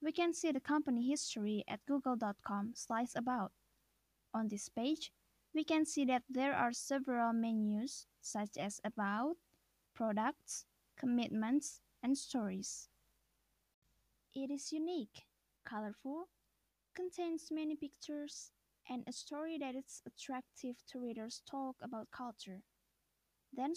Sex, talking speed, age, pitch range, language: female, 120 wpm, 10-29, 220-290 Hz, English